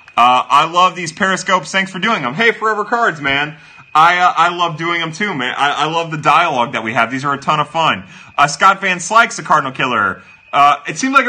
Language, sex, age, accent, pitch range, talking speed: English, male, 30-49, American, 140-195 Hz, 245 wpm